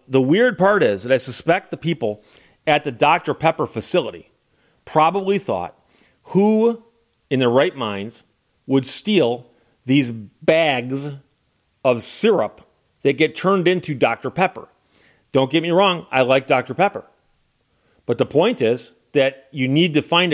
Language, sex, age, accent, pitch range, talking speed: English, male, 40-59, American, 120-165 Hz, 150 wpm